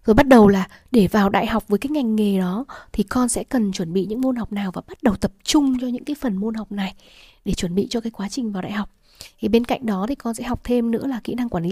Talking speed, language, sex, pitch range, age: 300 wpm, Vietnamese, female, 200-255 Hz, 20-39